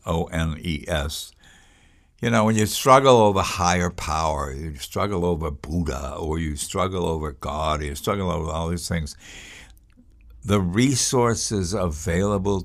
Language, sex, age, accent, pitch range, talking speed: English, male, 60-79, American, 75-95 Hz, 130 wpm